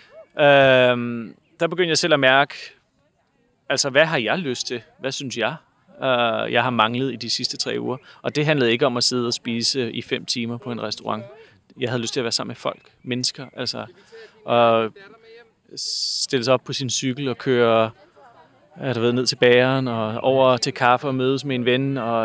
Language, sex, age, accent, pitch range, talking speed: Danish, male, 30-49, native, 120-145 Hz, 200 wpm